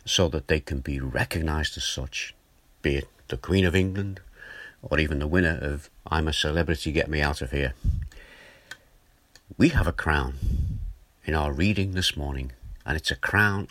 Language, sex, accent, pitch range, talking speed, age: English, male, British, 70-80 Hz, 175 wpm, 50-69